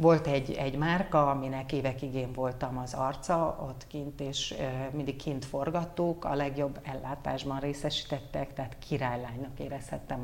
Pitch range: 130-165 Hz